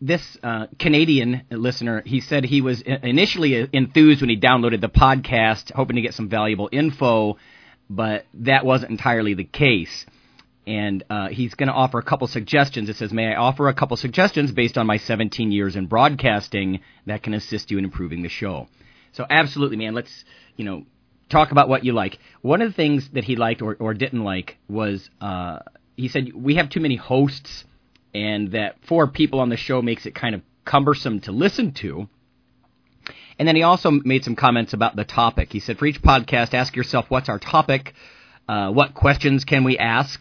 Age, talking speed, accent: 40-59, 195 wpm, American